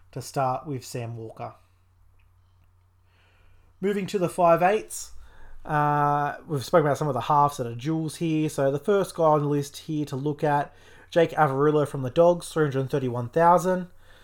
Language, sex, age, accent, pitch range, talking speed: English, male, 20-39, Australian, 130-160 Hz, 160 wpm